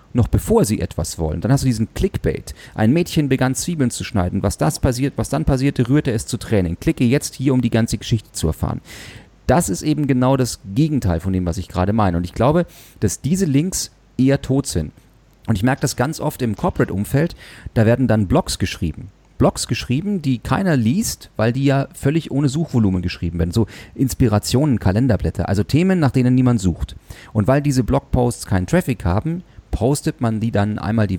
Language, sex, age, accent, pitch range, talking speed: German, male, 40-59, German, 95-130 Hz, 200 wpm